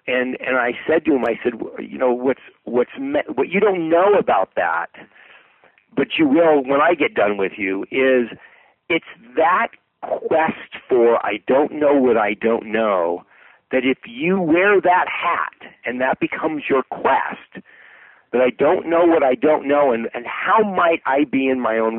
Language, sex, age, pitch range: English, male, 50-69, 115-170 Hz